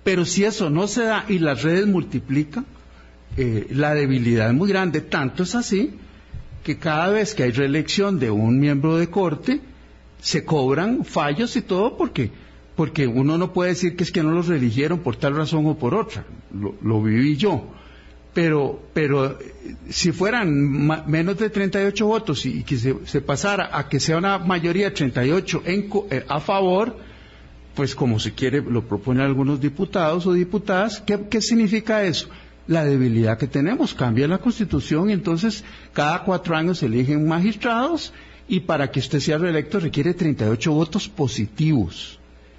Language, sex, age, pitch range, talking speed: Spanish, male, 50-69, 125-195 Hz, 170 wpm